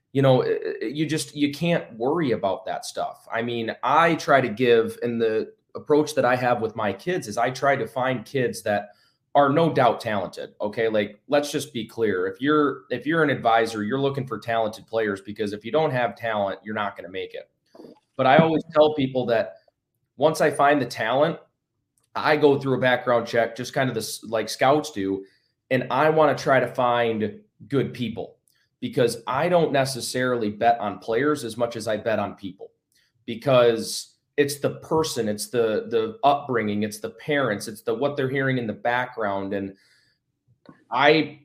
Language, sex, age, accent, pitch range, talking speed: English, male, 30-49, American, 115-145 Hz, 190 wpm